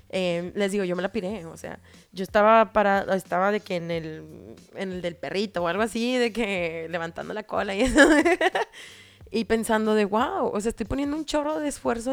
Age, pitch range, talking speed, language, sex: 20-39, 190-255 Hz, 215 wpm, Spanish, female